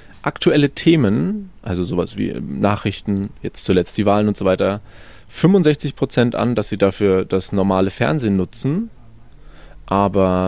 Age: 20-39